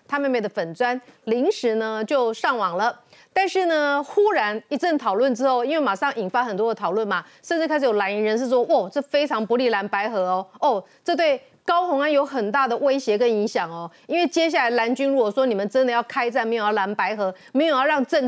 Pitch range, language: 210-290 Hz, Chinese